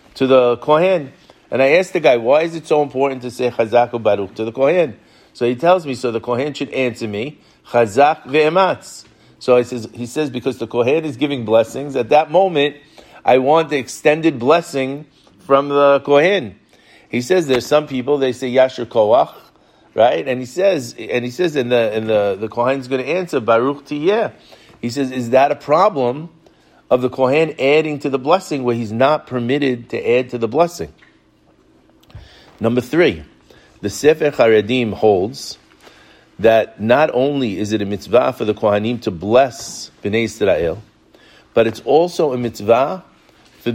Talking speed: 180 wpm